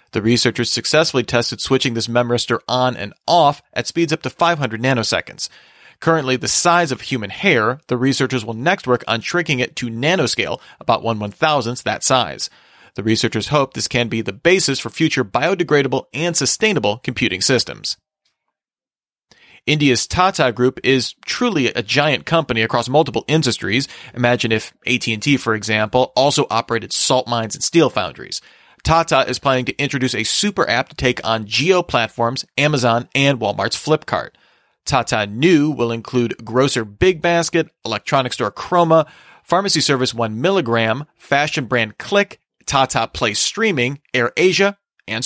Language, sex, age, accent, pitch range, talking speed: English, male, 40-59, American, 120-155 Hz, 150 wpm